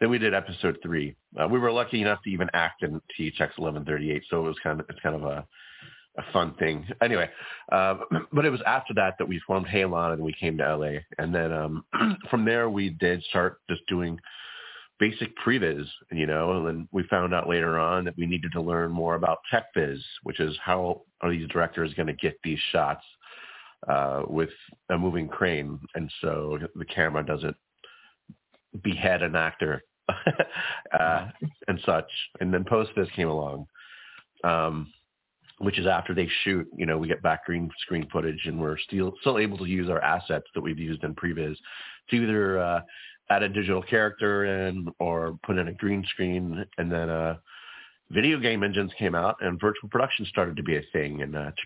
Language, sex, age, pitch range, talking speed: English, male, 30-49, 80-95 Hz, 195 wpm